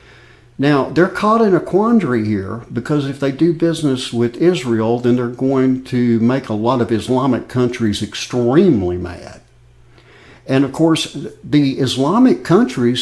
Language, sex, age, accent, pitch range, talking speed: English, male, 60-79, American, 115-155 Hz, 145 wpm